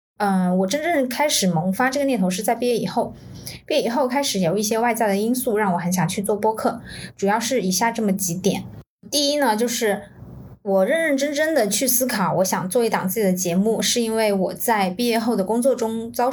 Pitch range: 195-260 Hz